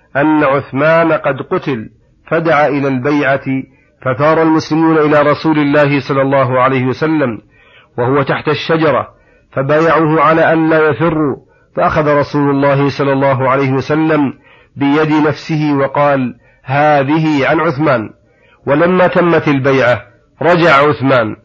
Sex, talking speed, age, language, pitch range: male, 120 wpm, 40-59, Arabic, 135-155 Hz